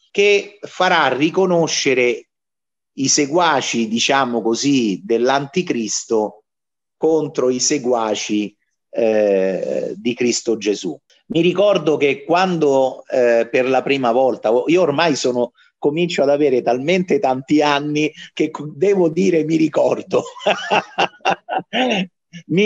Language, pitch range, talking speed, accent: Italian, 115-165 Hz, 105 wpm, native